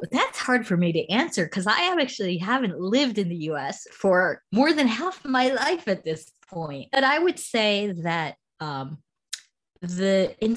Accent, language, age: American, English, 30-49